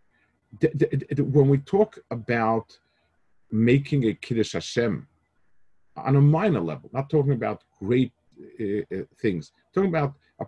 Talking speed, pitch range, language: 120 wpm, 95-135 Hz, English